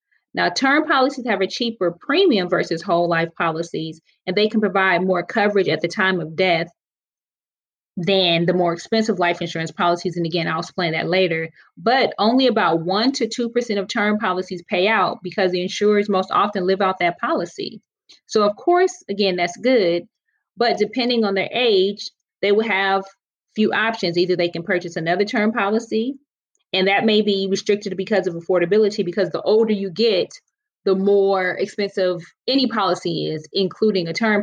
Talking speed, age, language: 175 wpm, 30-49, English